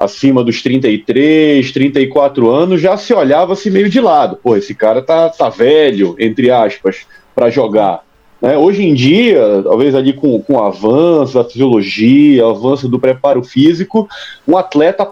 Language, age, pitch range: Portuguese, 40-59, 140-230 Hz